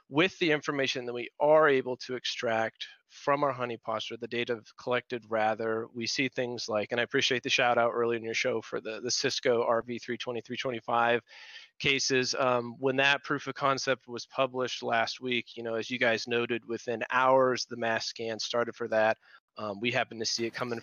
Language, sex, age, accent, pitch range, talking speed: English, male, 30-49, American, 115-135 Hz, 195 wpm